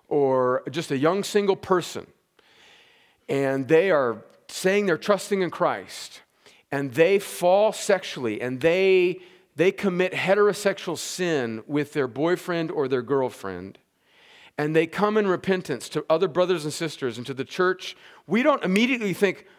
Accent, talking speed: American, 145 wpm